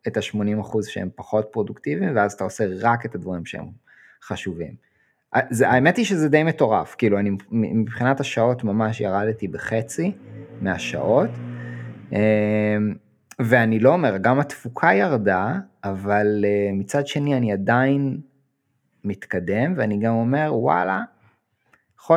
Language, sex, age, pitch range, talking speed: Hebrew, male, 20-39, 100-135 Hz, 120 wpm